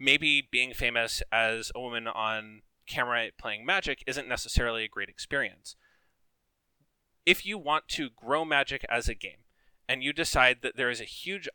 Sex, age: male, 20-39